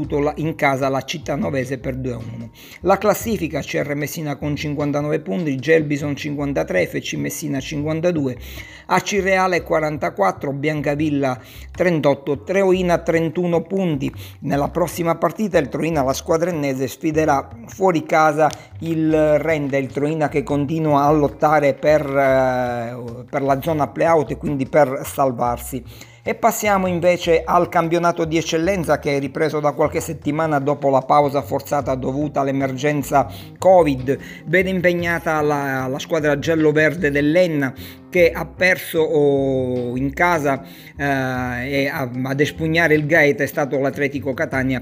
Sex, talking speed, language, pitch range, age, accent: male, 135 wpm, Italian, 140-165 Hz, 50-69, native